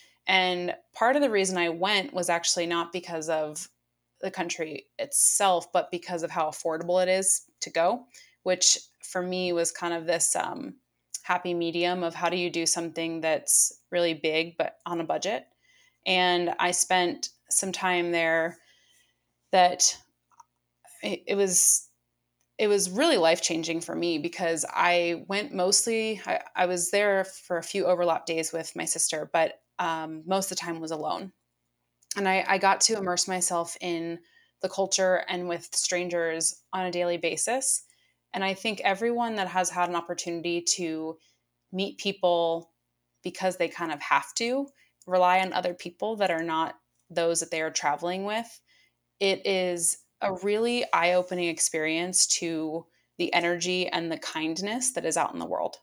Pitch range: 165-190 Hz